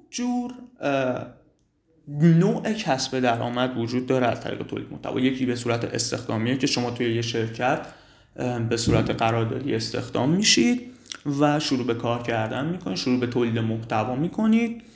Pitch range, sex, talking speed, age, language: 120-180 Hz, male, 135 wpm, 30-49, Persian